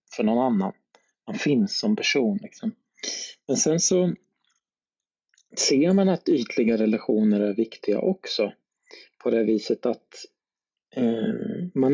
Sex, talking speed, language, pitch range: male, 115 wpm, Swedish, 120-185 Hz